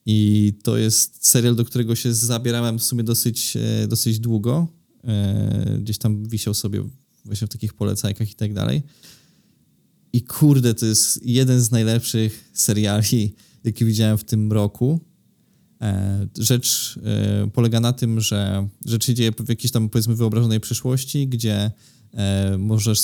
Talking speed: 135 wpm